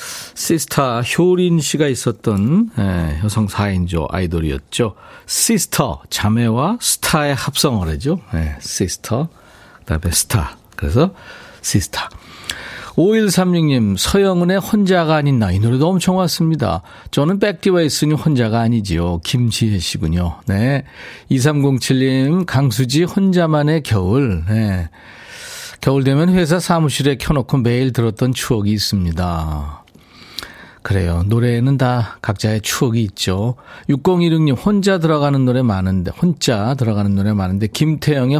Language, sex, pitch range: Korean, male, 105-165 Hz